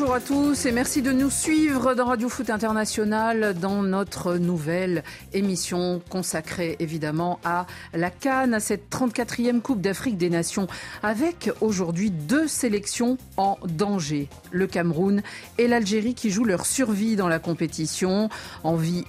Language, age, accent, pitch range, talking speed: French, 50-69, French, 165-220 Hz, 145 wpm